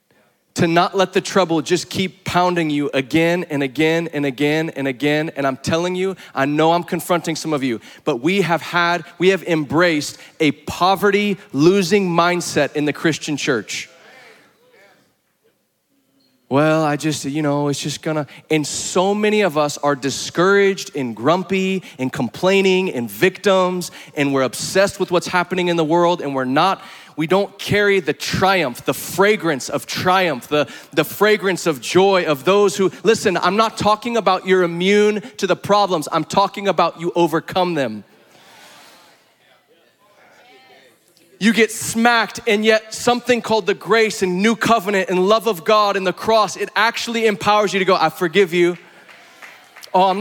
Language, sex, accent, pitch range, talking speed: English, male, American, 150-195 Hz, 165 wpm